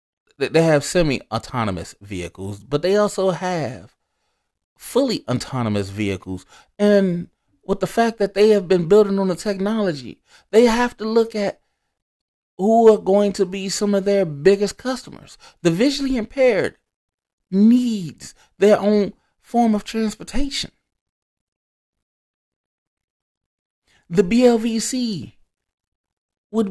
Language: English